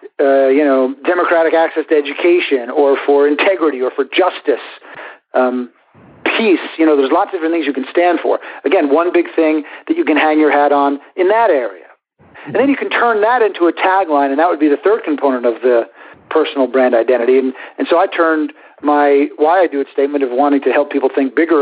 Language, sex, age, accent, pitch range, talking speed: English, male, 50-69, American, 140-170 Hz, 220 wpm